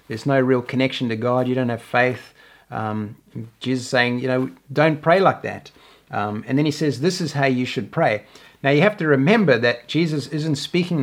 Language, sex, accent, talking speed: English, male, Australian, 220 wpm